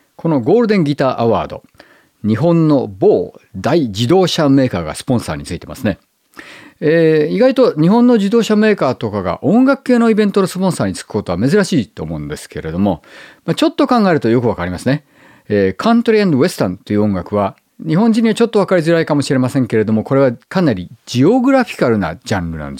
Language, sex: Japanese, male